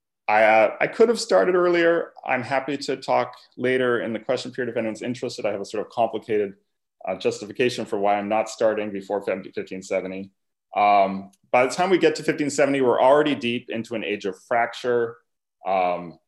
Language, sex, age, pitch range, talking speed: English, male, 30-49, 105-140 Hz, 185 wpm